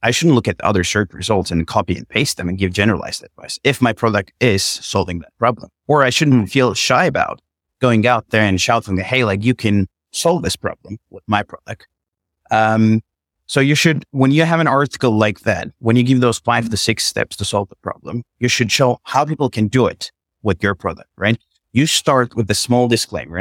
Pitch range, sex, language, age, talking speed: 100-125 Hz, male, English, 30-49, 220 wpm